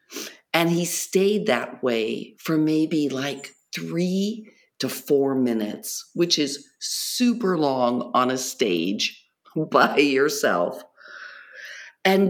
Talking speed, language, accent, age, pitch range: 105 wpm, English, American, 50-69, 140-190 Hz